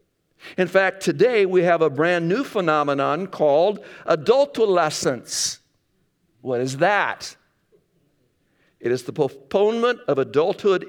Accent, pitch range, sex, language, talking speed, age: American, 140-190 Hz, male, English, 110 wpm, 60-79